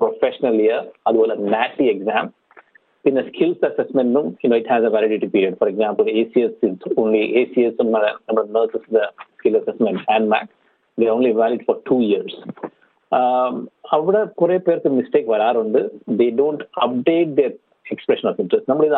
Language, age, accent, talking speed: Malayalam, 50-69, native, 155 wpm